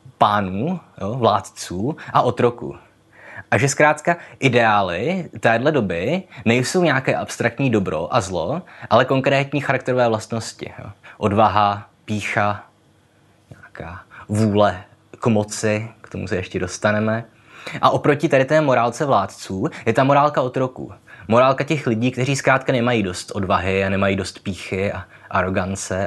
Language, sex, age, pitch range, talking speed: Czech, male, 20-39, 100-130 Hz, 130 wpm